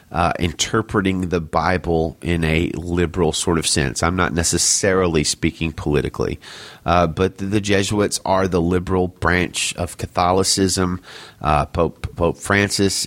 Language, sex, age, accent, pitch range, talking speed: English, male, 30-49, American, 85-110 Hz, 140 wpm